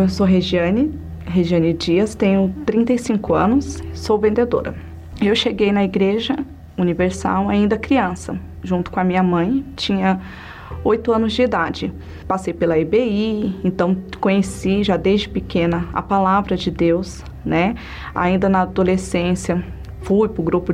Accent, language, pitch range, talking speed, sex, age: Brazilian, Portuguese, 175-215 Hz, 135 wpm, female, 20-39